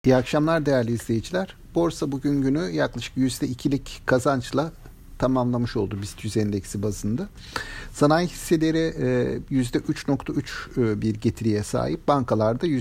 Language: Turkish